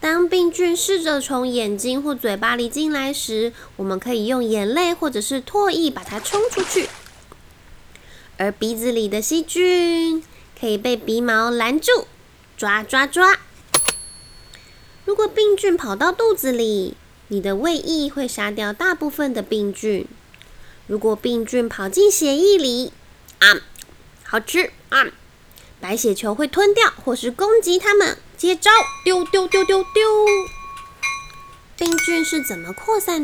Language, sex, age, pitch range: Chinese, female, 20-39, 220-360 Hz